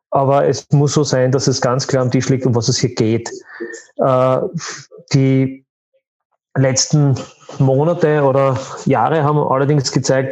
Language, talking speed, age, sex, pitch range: German, 145 wpm, 30-49, male, 125-140 Hz